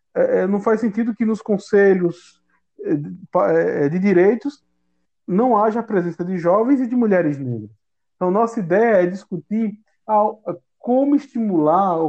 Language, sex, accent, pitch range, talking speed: Portuguese, male, Brazilian, 165-220 Hz, 125 wpm